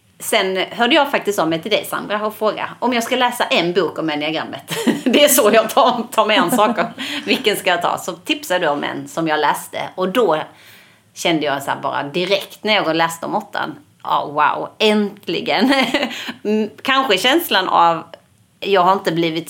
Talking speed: 195 wpm